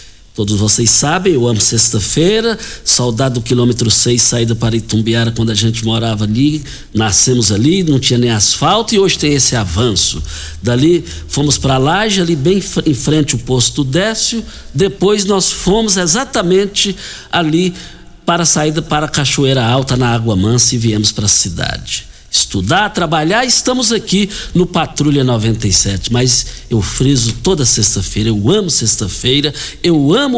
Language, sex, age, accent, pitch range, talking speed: Portuguese, male, 60-79, Brazilian, 120-180 Hz, 155 wpm